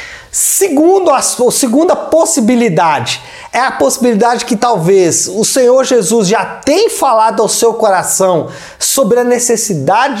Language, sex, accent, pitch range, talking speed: Portuguese, male, Brazilian, 195-255 Hz, 125 wpm